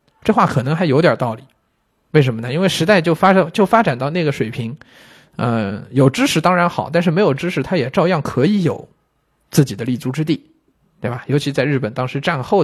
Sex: male